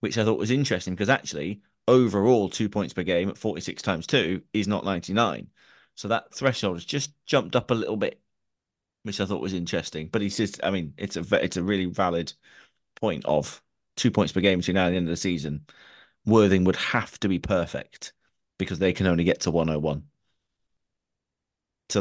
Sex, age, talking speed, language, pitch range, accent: male, 30-49, 200 wpm, English, 85-100 Hz, British